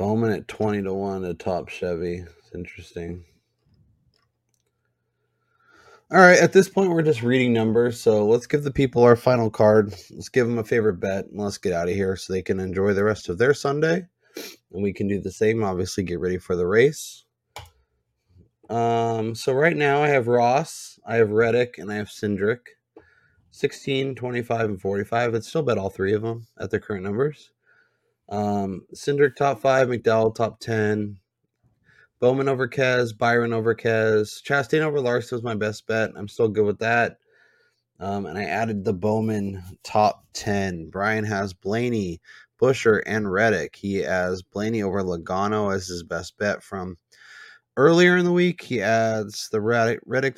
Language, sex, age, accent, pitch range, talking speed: English, male, 20-39, American, 100-120 Hz, 175 wpm